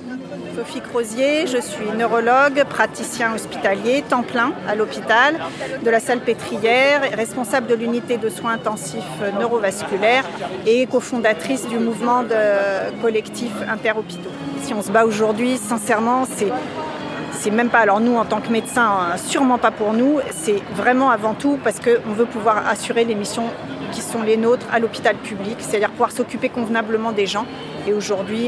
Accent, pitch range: French, 215-255 Hz